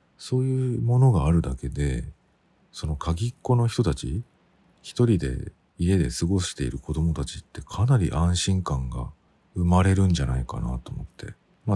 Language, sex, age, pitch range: Japanese, male, 50-69, 70-110 Hz